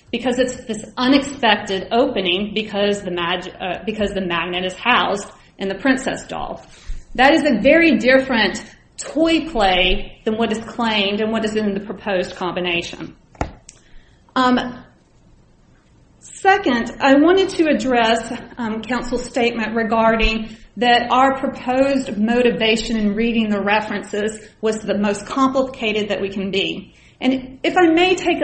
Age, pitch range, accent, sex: 30-49, 205-260 Hz, American, female